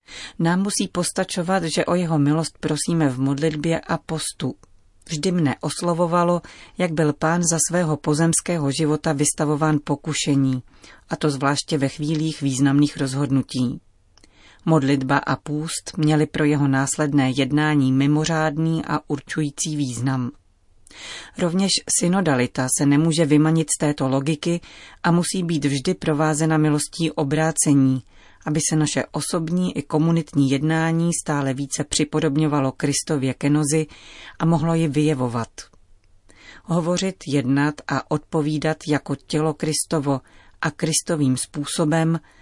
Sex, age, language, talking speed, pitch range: female, 30-49, Czech, 120 wpm, 140-160 Hz